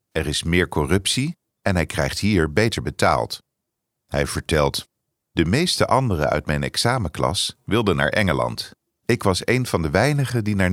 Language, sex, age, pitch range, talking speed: English, male, 50-69, 75-105 Hz, 160 wpm